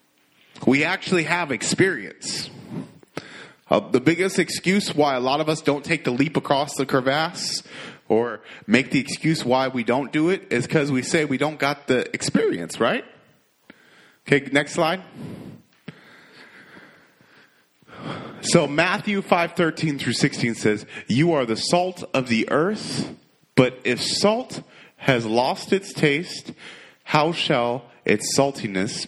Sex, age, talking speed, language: male, 30-49, 140 wpm, English